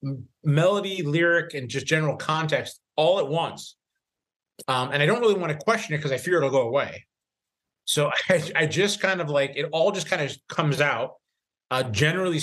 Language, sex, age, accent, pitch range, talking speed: English, male, 30-49, American, 135-180 Hz, 195 wpm